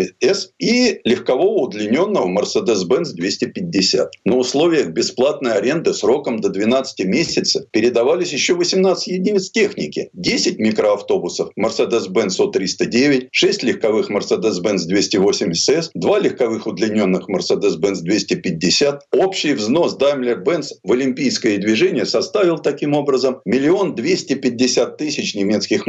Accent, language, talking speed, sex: native, Russian, 105 wpm, male